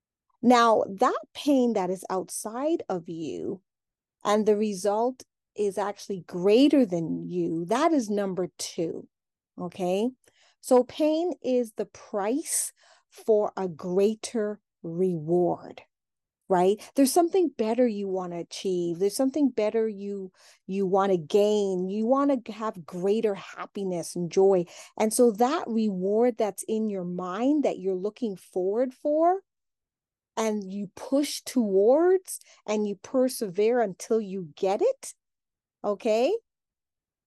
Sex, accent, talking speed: female, American, 120 wpm